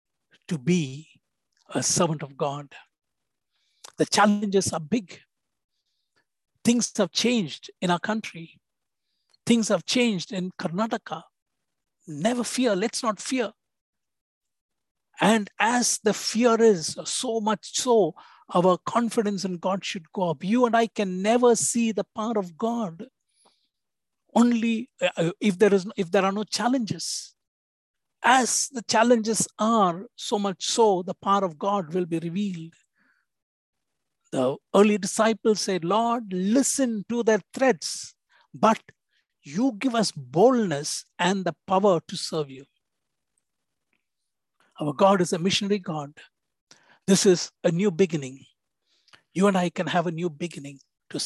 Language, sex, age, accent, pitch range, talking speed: English, male, 60-79, Indian, 170-220 Hz, 135 wpm